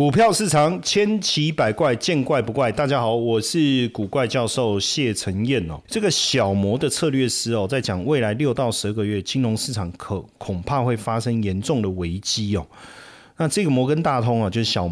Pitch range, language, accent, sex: 100-130 Hz, Chinese, native, male